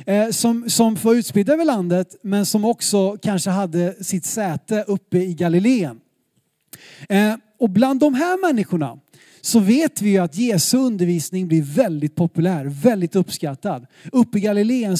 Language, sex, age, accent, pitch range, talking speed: Swedish, male, 30-49, native, 165-215 Hz, 140 wpm